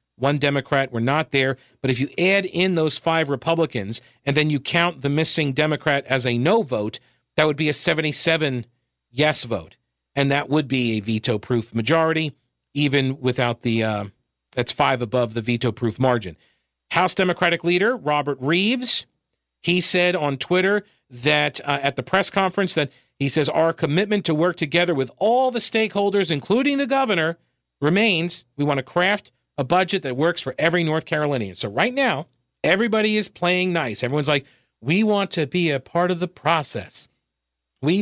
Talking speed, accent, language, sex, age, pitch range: 175 wpm, American, English, male, 40-59, 125-175 Hz